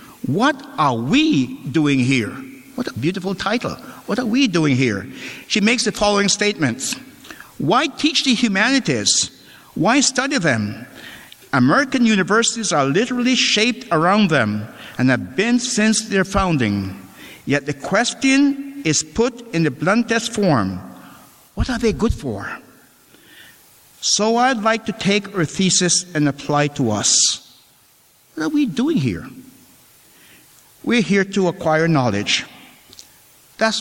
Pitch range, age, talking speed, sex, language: 140-225 Hz, 50-69, 135 wpm, male, English